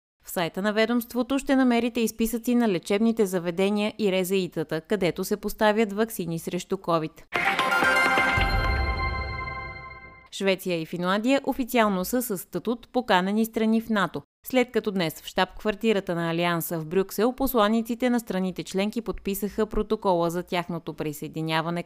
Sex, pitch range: female, 175-225 Hz